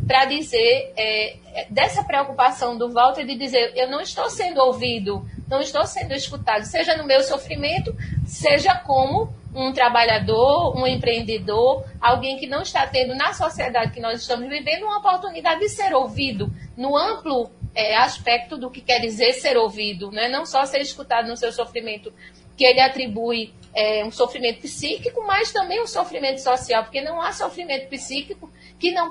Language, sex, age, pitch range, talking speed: Portuguese, female, 40-59, 240-285 Hz, 160 wpm